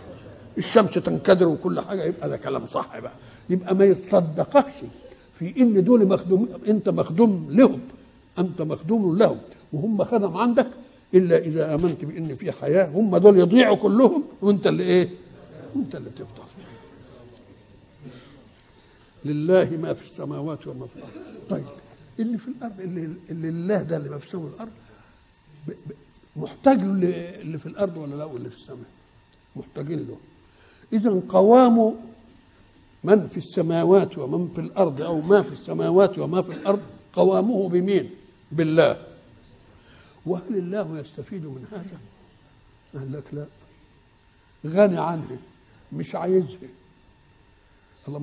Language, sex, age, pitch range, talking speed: Arabic, male, 60-79, 145-200 Hz, 130 wpm